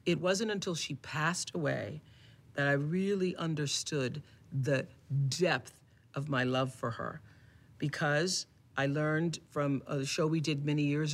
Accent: American